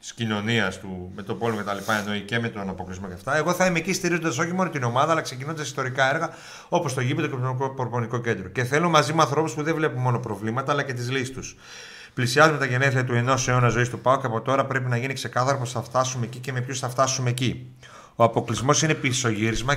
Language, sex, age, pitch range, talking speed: Greek, male, 30-49, 115-145 Hz, 245 wpm